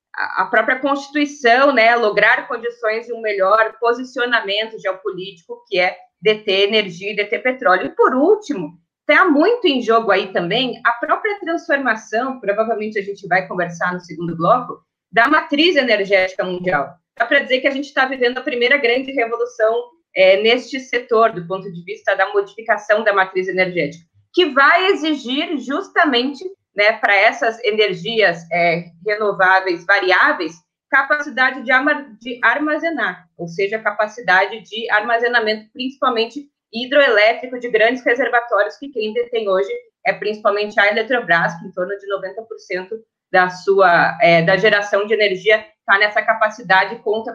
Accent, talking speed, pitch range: Brazilian, 145 wpm, 195-260 Hz